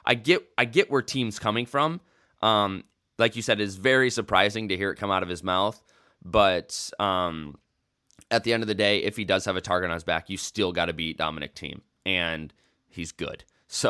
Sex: male